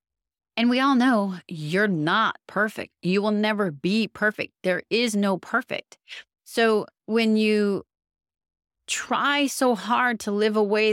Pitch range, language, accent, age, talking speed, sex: 160-210 Hz, English, American, 30-49, 145 wpm, female